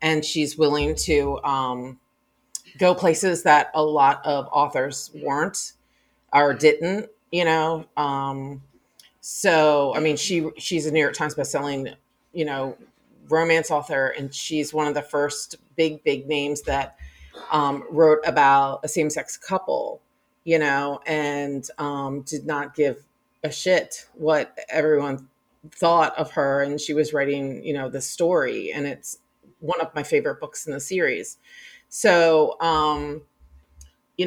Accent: American